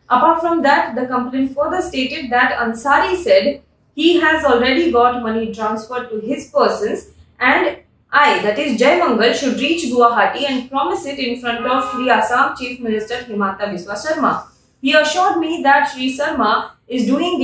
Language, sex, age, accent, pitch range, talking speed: English, female, 20-39, Indian, 235-290 Hz, 170 wpm